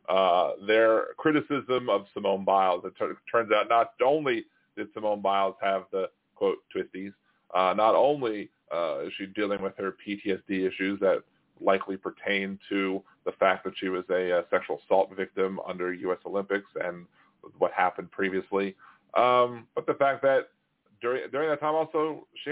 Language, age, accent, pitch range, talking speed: English, 40-59, American, 100-155 Hz, 165 wpm